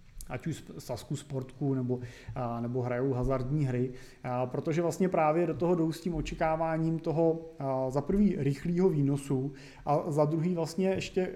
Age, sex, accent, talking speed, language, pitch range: 30-49, male, native, 160 wpm, Czech, 130-165 Hz